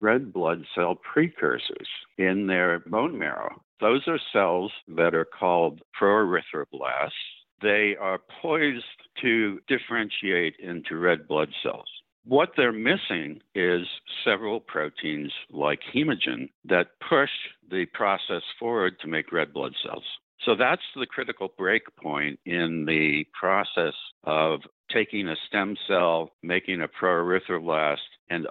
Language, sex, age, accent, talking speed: English, male, 60-79, American, 125 wpm